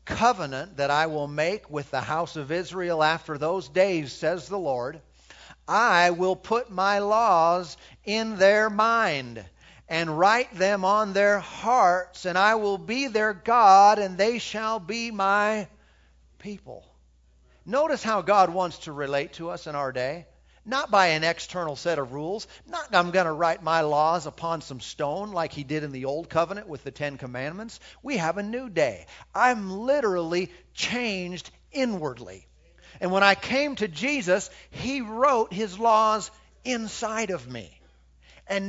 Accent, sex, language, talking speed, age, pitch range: American, male, English, 160 wpm, 50-69, 155-215 Hz